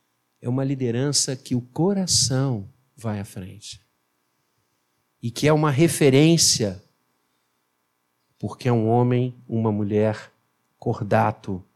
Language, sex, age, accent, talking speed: Portuguese, male, 50-69, Brazilian, 105 wpm